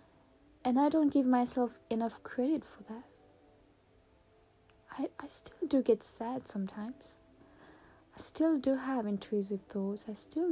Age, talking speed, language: 10-29, 135 wpm, English